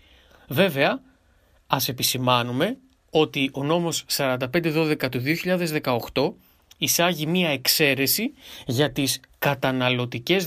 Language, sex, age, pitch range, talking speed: English, male, 30-49, 125-170 Hz, 75 wpm